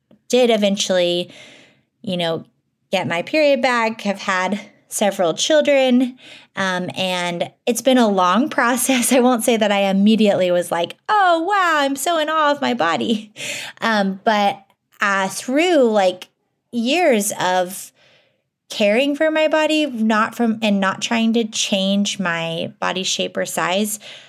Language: English